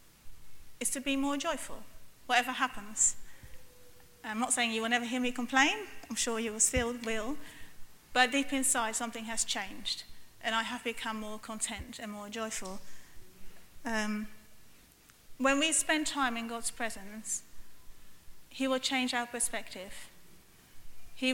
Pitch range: 215-250 Hz